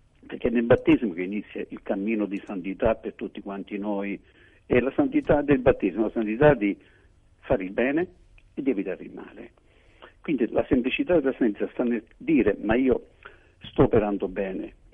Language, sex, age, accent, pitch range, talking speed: Italian, male, 50-69, native, 100-115 Hz, 175 wpm